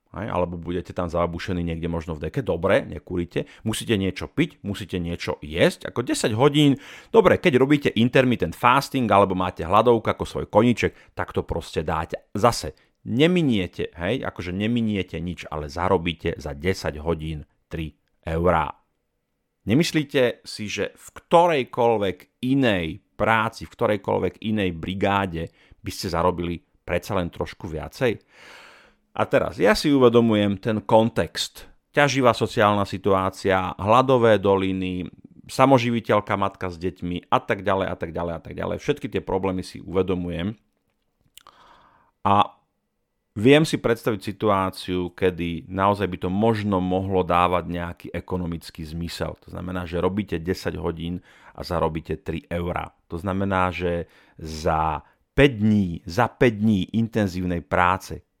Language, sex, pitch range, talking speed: Slovak, male, 85-110 Hz, 135 wpm